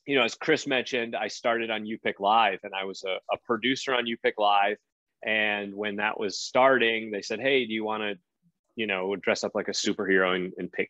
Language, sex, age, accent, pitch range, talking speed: English, male, 30-49, American, 105-140 Hz, 235 wpm